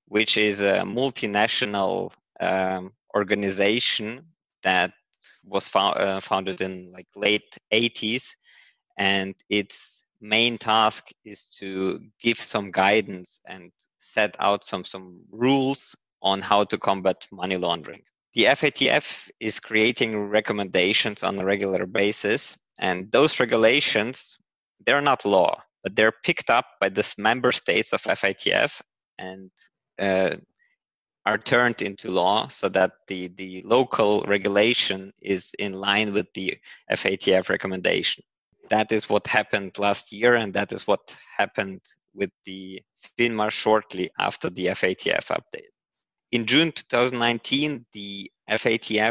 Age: 20-39